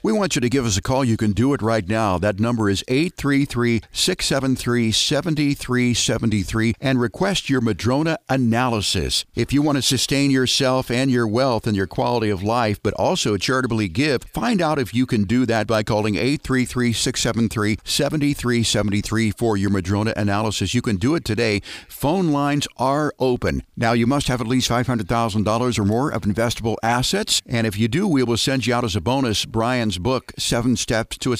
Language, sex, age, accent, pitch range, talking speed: English, male, 50-69, American, 105-130 Hz, 180 wpm